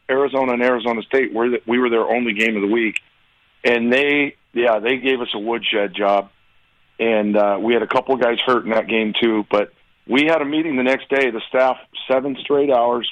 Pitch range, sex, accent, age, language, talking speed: 110-130 Hz, male, American, 40-59, English, 220 wpm